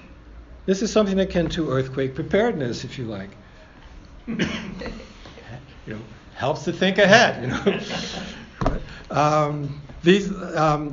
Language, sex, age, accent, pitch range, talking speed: English, male, 60-79, American, 135-180 Hz, 115 wpm